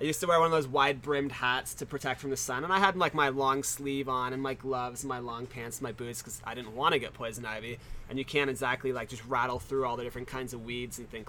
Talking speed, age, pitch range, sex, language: 305 wpm, 20-39, 120-145 Hz, male, English